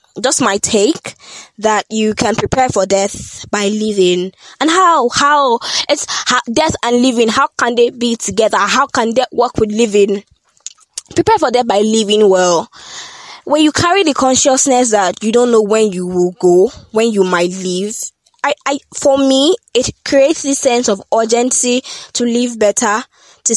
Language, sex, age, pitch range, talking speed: English, female, 10-29, 210-265 Hz, 170 wpm